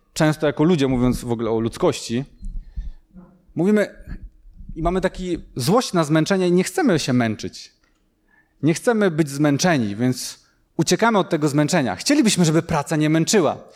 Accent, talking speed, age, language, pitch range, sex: native, 150 wpm, 30-49, Polish, 160-185 Hz, male